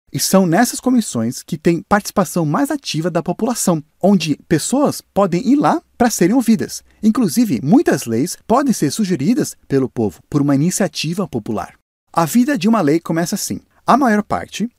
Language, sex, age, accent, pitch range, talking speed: Portuguese, male, 30-49, Brazilian, 145-220 Hz, 165 wpm